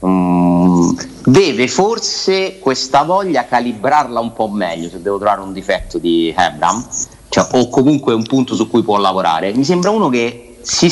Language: Italian